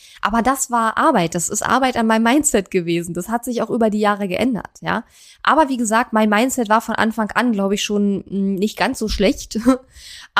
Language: German